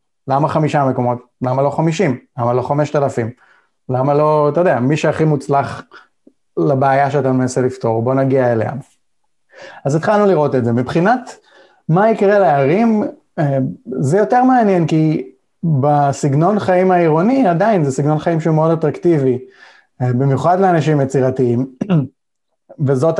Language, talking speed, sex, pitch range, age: Hebrew, 130 wpm, male, 130-175 Hz, 30-49